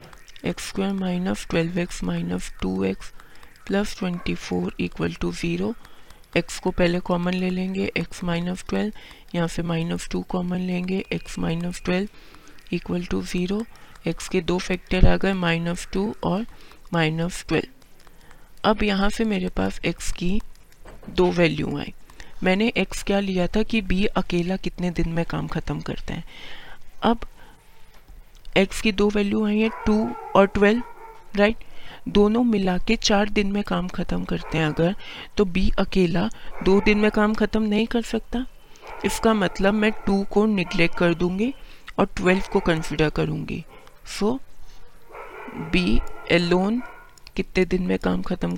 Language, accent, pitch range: Hindi, native, 170-210 Hz